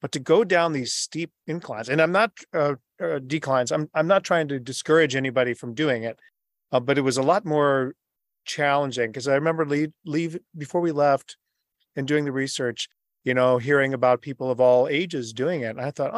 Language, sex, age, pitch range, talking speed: English, male, 40-59, 125-150 Hz, 210 wpm